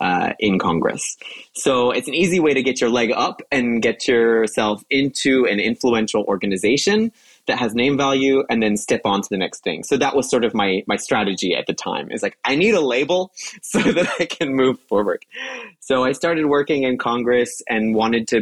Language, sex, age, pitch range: English, male, 20-39, 100-135 Hz